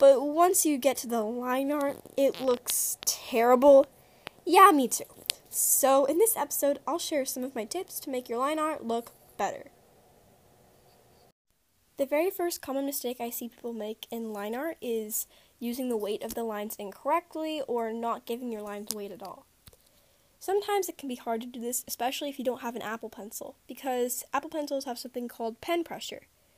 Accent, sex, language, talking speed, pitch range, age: American, female, English, 185 wpm, 225-305 Hz, 10-29